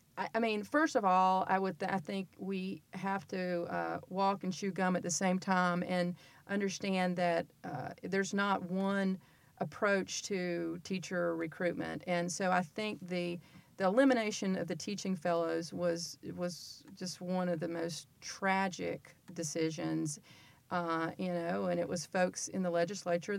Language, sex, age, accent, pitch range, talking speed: English, female, 40-59, American, 175-210 Hz, 160 wpm